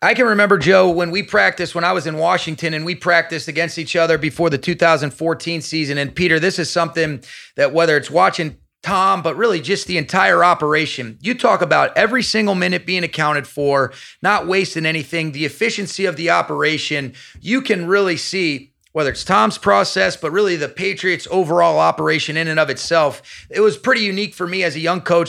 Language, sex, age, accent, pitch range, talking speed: English, male, 30-49, American, 155-180 Hz, 195 wpm